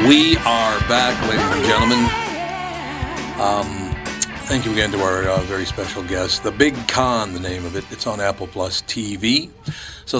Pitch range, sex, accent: 95-120 Hz, male, American